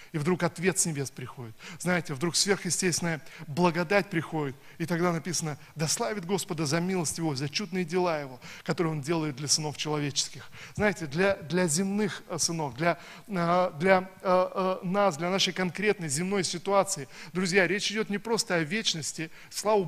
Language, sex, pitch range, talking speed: Russian, male, 150-185 Hz, 160 wpm